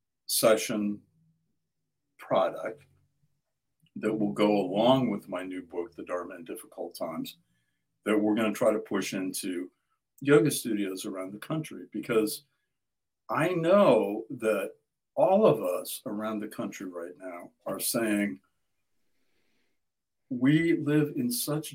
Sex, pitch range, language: male, 105-140 Hz, English